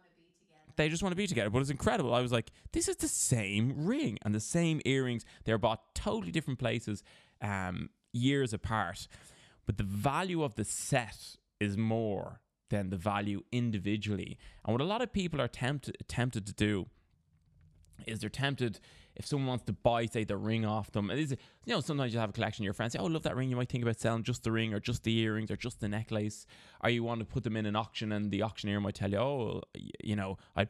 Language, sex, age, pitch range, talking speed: English, male, 20-39, 105-130 Hz, 225 wpm